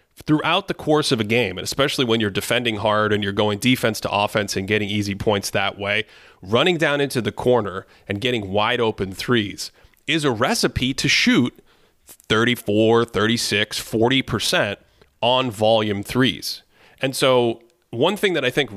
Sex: male